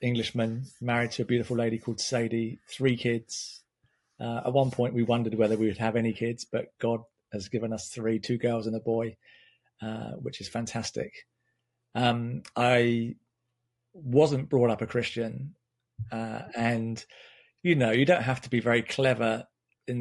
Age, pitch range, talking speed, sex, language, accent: 40-59, 115-125 Hz, 170 wpm, male, English, British